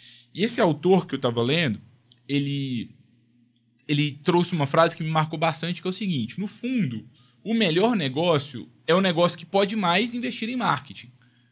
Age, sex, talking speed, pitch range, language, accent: 20-39, male, 175 wpm, 130-195 Hz, Portuguese, Brazilian